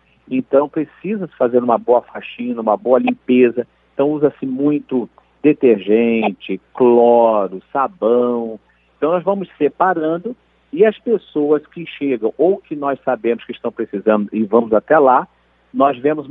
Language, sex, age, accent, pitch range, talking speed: Portuguese, male, 50-69, Brazilian, 120-160 Hz, 135 wpm